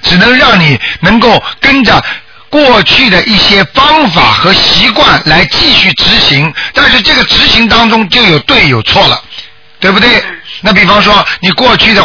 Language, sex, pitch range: Chinese, male, 170-215 Hz